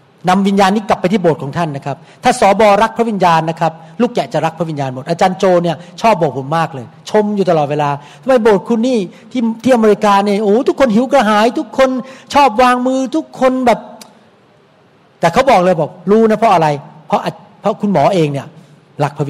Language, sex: Thai, male